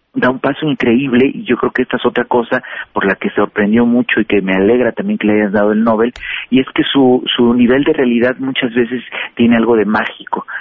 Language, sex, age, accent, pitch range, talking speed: Spanish, male, 40-59, Mexican, 105-125 Hz, 240 wpm